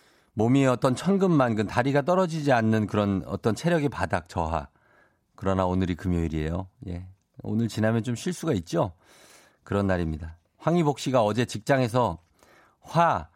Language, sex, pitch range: Korean, male, 95-140 Hz